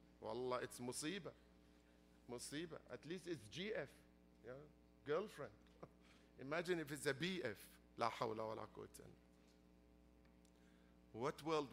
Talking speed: 85 wpm